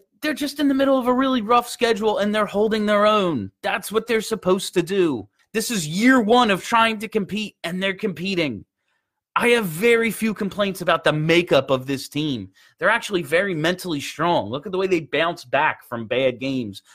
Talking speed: 205 wpm